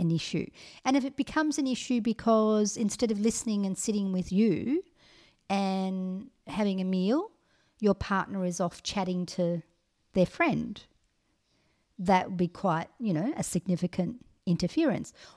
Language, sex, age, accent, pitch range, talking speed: English, female, 50-69, Australian, 190-235 Hz, 145 wpm